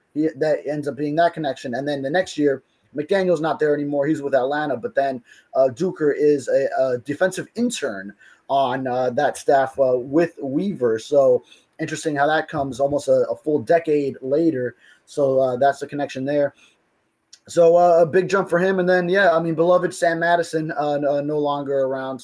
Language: English